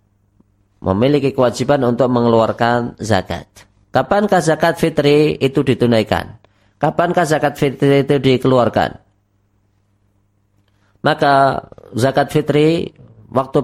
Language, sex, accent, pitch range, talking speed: Indonesian, female, native, 100-135 Hz, 85 wpm